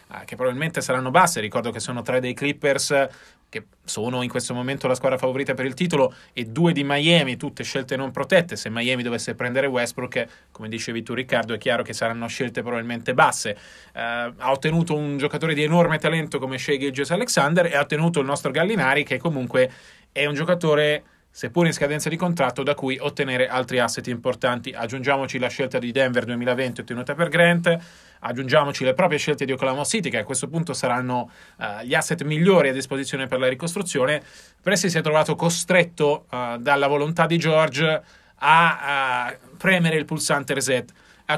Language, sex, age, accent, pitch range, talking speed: Italian, male, 30-49, native, 130-155 Hz, 185 wpm